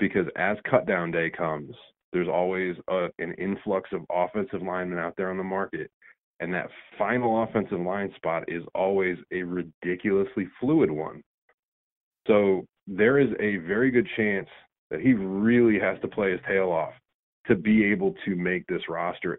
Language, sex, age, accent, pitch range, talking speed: English, male, 30-49, American, 90-110 Hz, 165 wpm